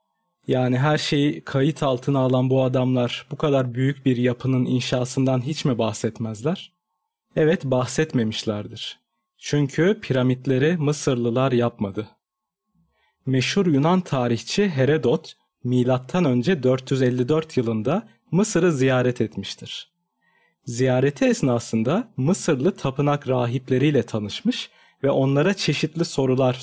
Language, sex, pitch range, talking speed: Turkish, male, 125-160 Hz, 95 wpm